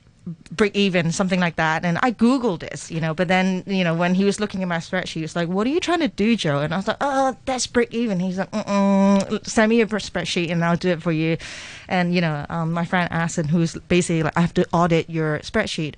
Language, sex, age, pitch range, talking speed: English, female, 30-49, 170-220 Hz, 265 wpm